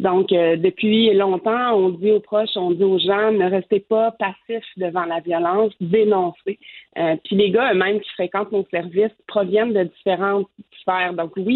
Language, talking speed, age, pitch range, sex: French, 180 wpm, 30-49, 180-210 Hz, female